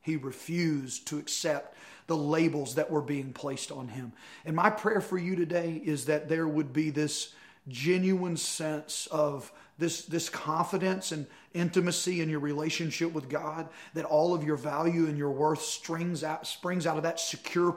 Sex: male